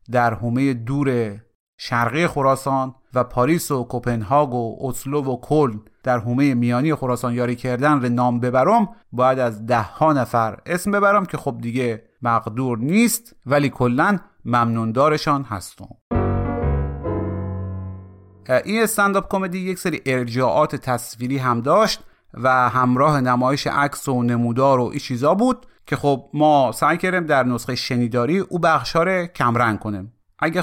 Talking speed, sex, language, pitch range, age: 140 wpm, male, Persian, 120-150 Hz, 30-49